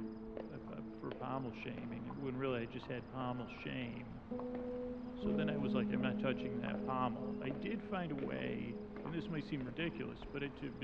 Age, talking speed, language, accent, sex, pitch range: 40-59, 170 wpm, English, American, male, 110-170 Hz